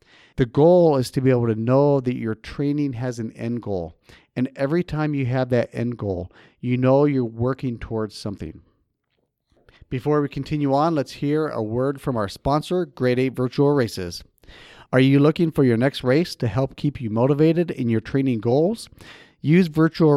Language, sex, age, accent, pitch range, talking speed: English, male, 40-59, American, 115-150 Hz, 185 wpm